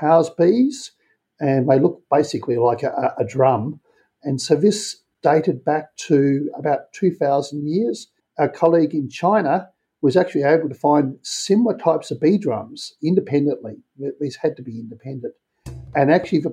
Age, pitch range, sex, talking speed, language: 50-69, 125-160 Hz, male, 155 wpm, English